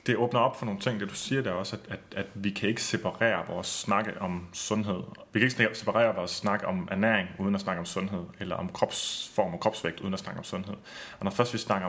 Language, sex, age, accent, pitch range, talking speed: Danish, male, 30-49, native, 95-115 Hz, 255 wpm